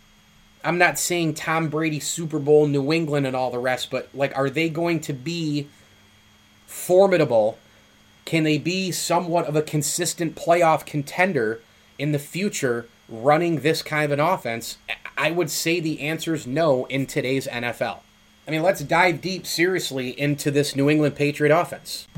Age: 30-49